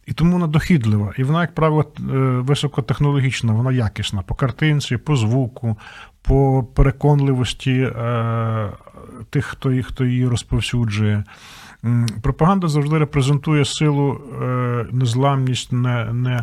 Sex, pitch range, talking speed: male, 120-150 Hz, 95 wpm